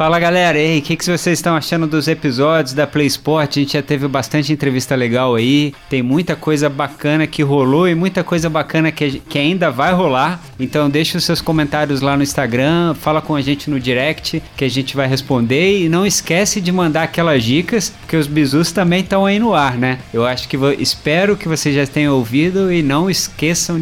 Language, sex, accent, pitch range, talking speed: Portuguese, male, Brazilian, 135-165 Hz, 210 wpm